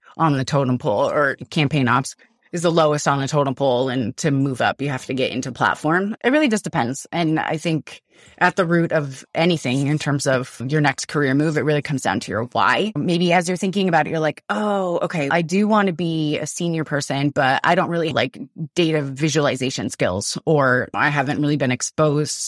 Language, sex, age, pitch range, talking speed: English, female, 20-39, 140-170 Hz, 220 wpm